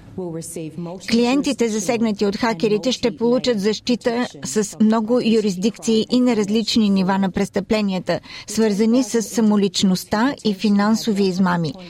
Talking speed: 110 wpm